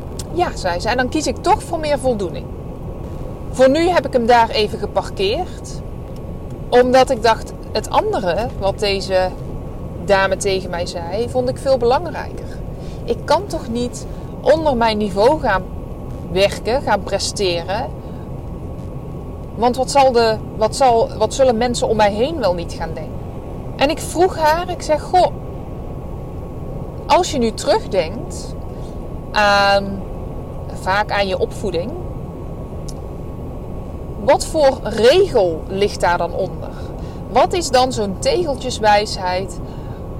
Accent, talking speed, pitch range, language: Dutch, 135 wpm, 200-265 Hz, Dutch